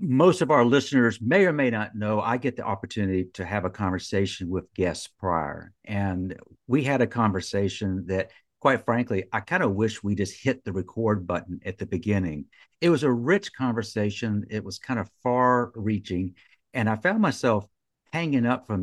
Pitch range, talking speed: 95-120 Hz, 185 wpm